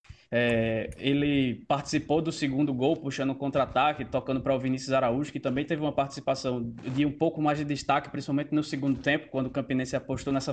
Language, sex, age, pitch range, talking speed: Portuguese, male, 20-39, 135-160 Hz, 200 wpm